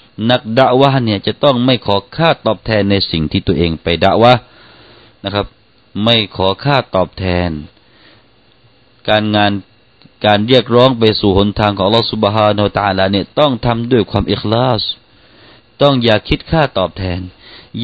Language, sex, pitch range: Thai, male, 100-120 Hz